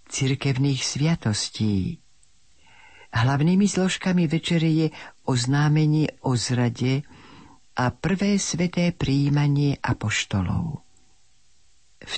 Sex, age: female, 50-69